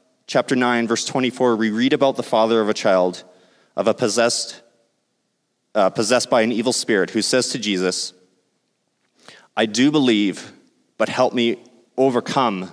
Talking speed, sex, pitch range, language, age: 150 wpm, male, 105-130 Hz, English, 30-49